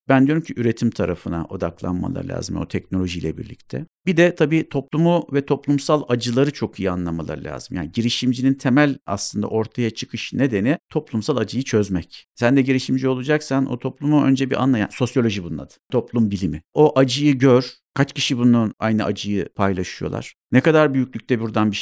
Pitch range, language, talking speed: 110-145 Hz, Turkish, 160 wpm